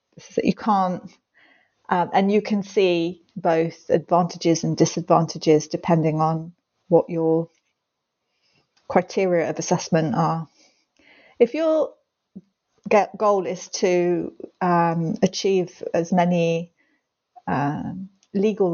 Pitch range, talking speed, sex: 170-205 Hz, 100 wpm, female